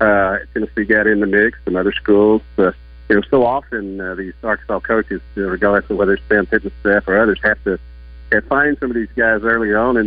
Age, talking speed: 40-59, 245 wpm